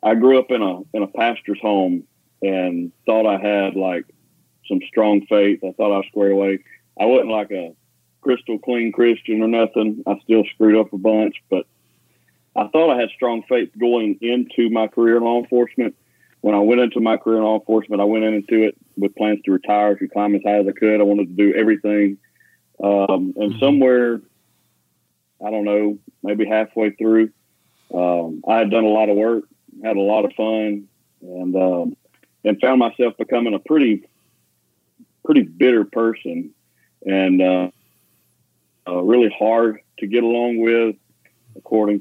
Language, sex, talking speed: English, male, 175 wpm